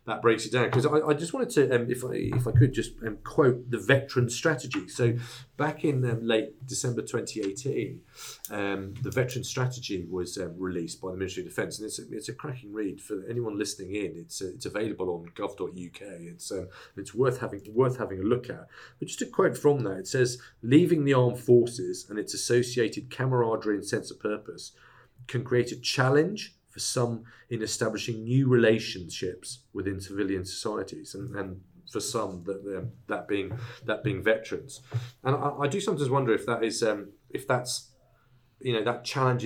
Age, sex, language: 40-59, male, English